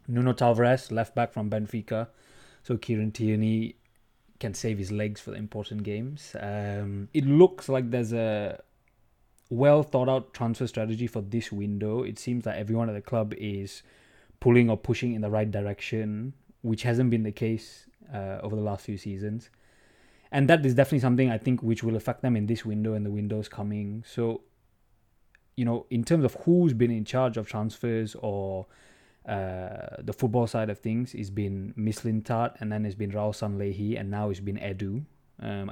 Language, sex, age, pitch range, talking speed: English, male, 20-39, 105-125 Hz, 180 wpm